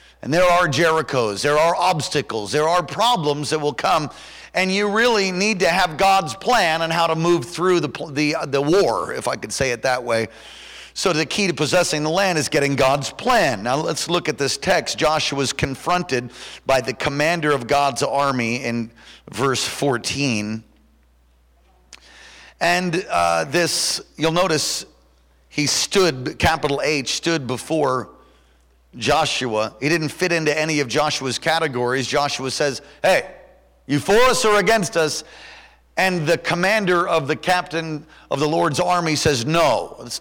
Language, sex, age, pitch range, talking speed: English, male, 50-69, 125-175 Hz, 165 wpm